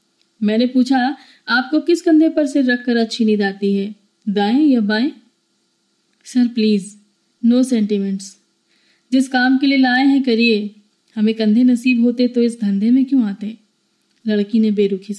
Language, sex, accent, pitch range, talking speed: Hindi, female, native, 205-255 Hz, 155 wpm